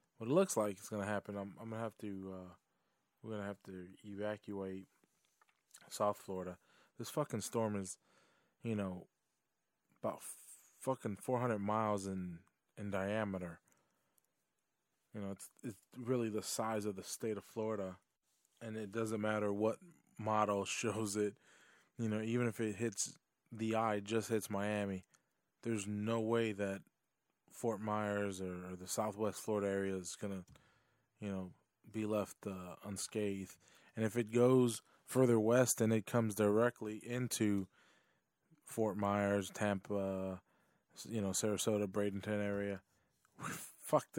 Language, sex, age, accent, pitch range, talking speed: English, male, 20-39, American, 100-115 Hz, 150 wpm